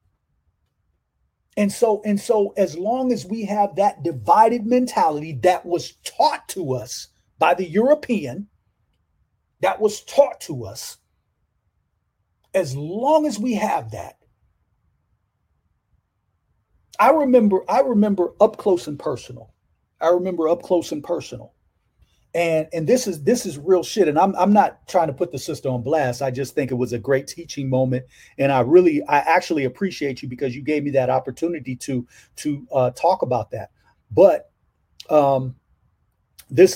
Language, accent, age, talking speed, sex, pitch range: English, American, 40-59, 155 wpm, male, 125-195 Hz